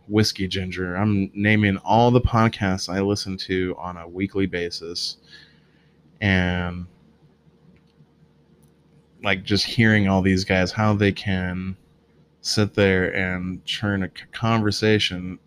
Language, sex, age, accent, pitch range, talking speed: English, male, 20-39, American, 90-105 Hz, 115 wpm